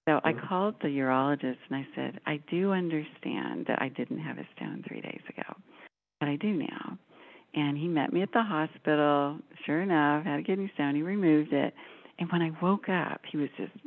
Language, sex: English, female